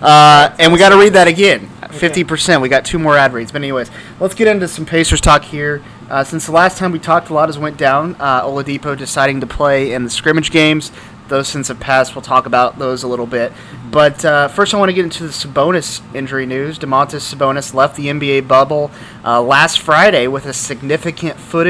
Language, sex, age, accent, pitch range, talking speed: English, male, 30-49, American, 135-160 Hz, 225 wpm